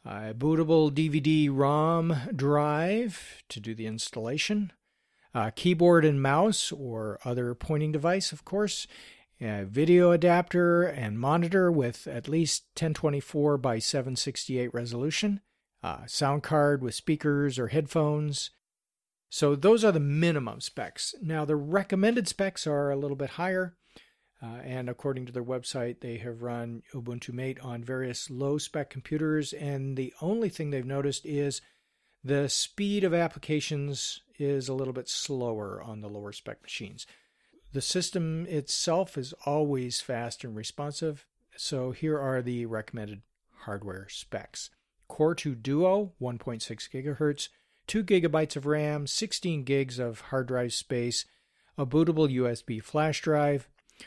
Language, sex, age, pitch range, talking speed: English, male, 50-69, 125-165 Hz, 145 wpm